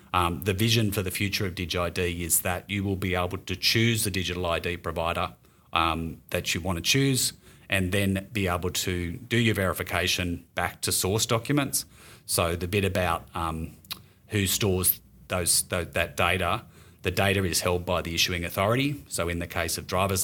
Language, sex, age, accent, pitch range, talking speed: English, male, 30-49, Australian, 90-105 Hz, 185 wpm